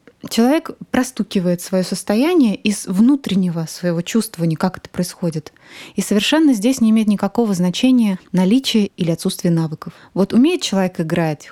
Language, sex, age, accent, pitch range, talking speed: Russian, female, 20-39, native, 175-220 Hz, 135 wpm